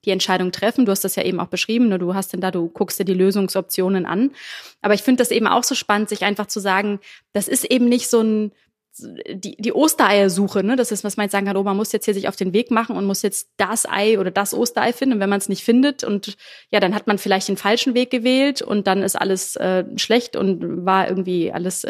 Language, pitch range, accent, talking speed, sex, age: German, 195-235 Hz, German, 255 wpm, female, 20-39